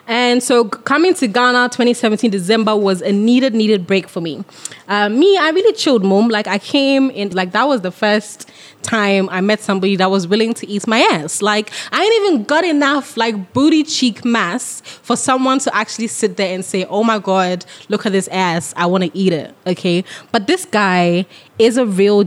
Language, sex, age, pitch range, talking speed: English, female, 20-39, 190-255 Hz, 205 wpm